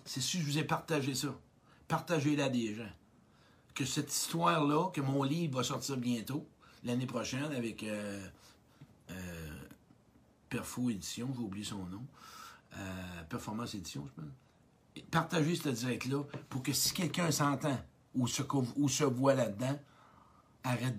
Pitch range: 115-140 Hz